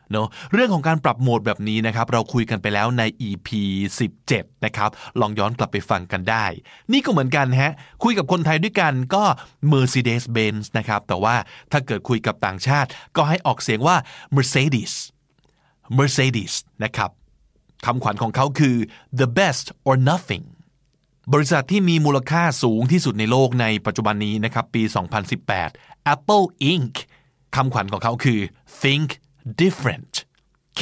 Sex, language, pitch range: male, Thai, 110-145 Hz